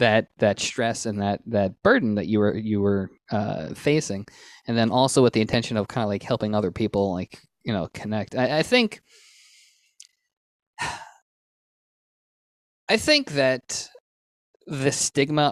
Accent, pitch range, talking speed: American, 115-175 Hz, 150 wpm